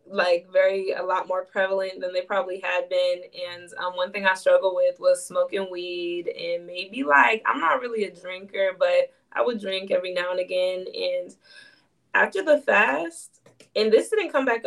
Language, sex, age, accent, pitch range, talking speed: English, female, 20-39, American, 180-270 Hz, 190 wpm